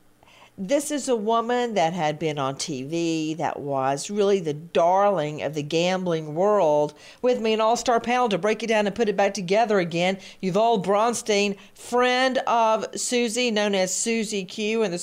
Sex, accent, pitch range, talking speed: female, American, 185-230 Hz, 175 wpm